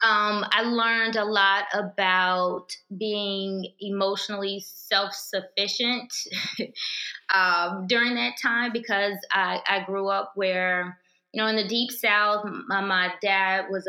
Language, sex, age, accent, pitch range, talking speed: English, female, 20-39, American, 195-235 Hz, 120 wpm